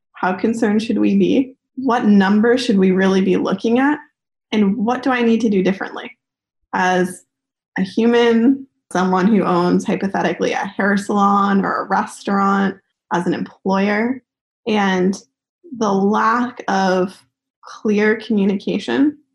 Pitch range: 185-230 Hz